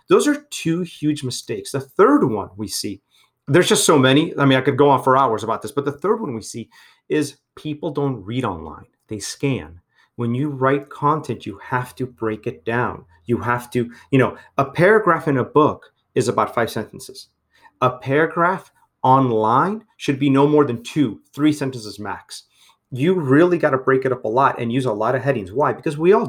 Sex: male